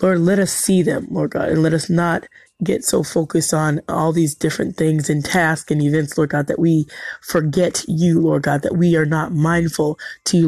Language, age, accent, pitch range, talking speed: English, 20-39, American, 150-175 Hz, 220 wpm